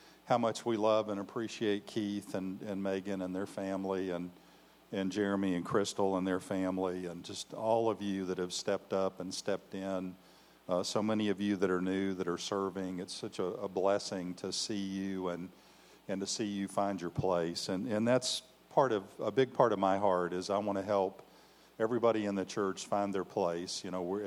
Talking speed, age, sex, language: 215 wpm, 50-69, male, English